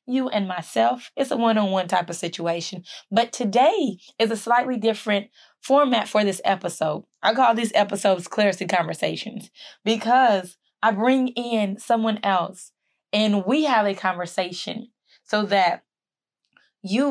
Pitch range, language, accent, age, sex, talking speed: 185-225 Hz, English, American, 20-39, female, 135 wpm